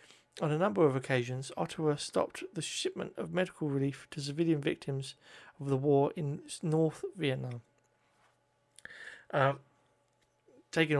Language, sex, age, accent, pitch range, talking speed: English, male, 40-59, British, 135-155 Hz, 125 wpm